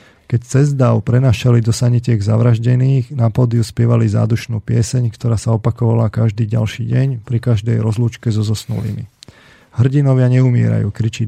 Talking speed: 135 wpm